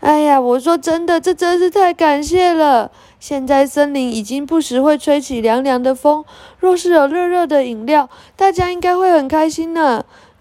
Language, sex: Chinese, female